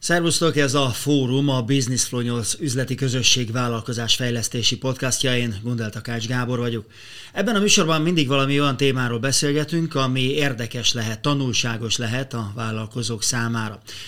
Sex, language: male, Hungarian